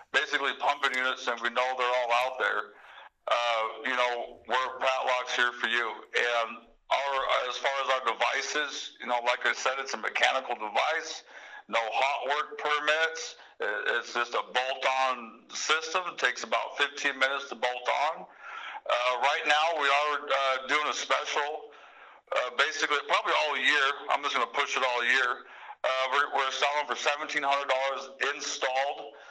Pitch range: 120-140 Hz